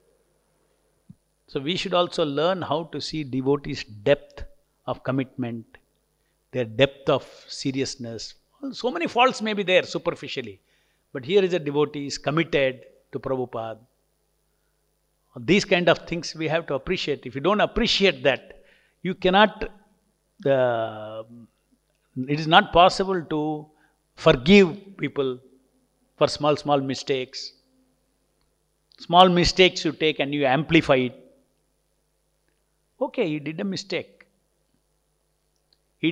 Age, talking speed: 50-69, 120 wpm